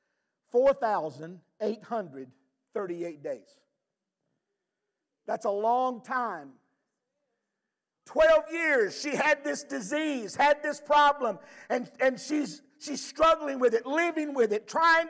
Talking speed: 105 wpm